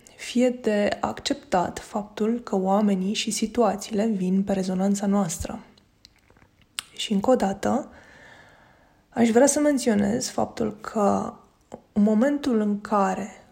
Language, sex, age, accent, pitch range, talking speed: Romanian, female, 20-39, native, 205-245 Hz, 115 wpm